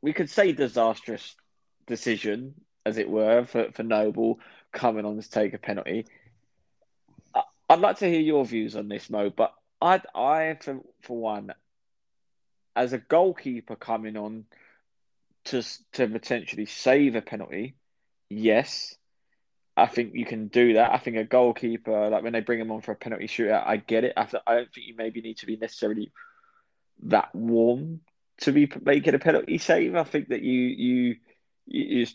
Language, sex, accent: English, male, British